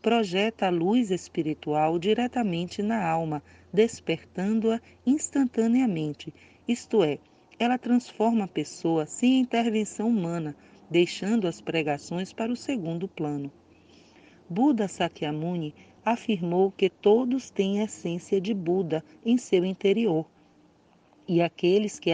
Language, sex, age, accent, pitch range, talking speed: Portuguese, female, 40-59, Brazilian, 160-220 Hz, 110 wpm